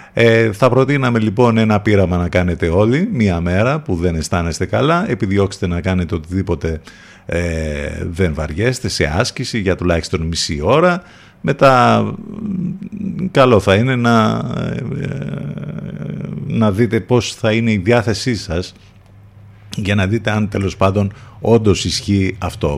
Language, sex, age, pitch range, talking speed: Greek, male, 50-69, 90-125 Hz, 125 wpm